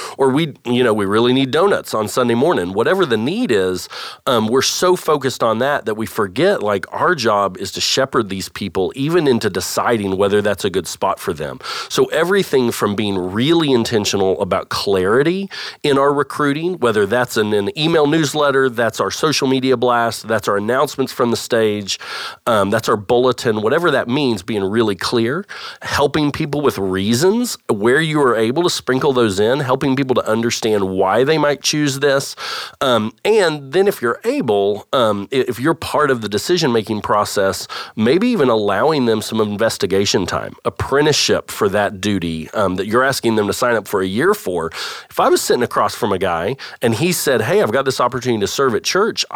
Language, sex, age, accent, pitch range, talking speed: English, male, 40-59, American, 105-145 Hz, 190 wpm